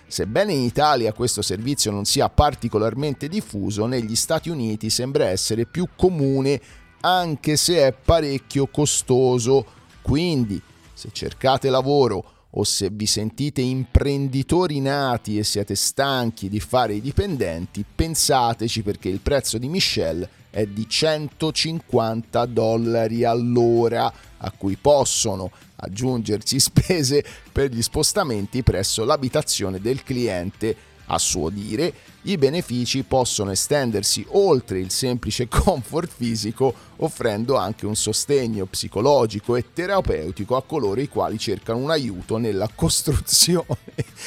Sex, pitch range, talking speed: male, 105-140 Hz, 120 wpm